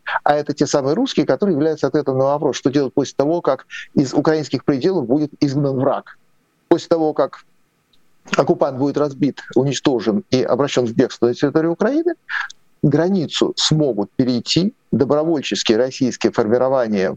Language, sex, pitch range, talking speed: Russian, male, 130-175 Hz, 145 wpm